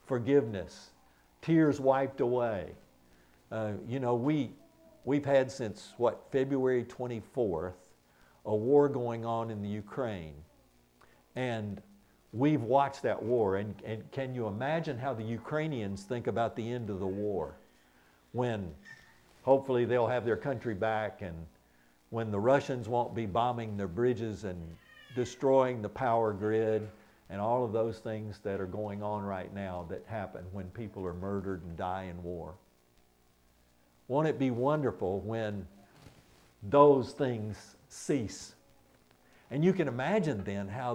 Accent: American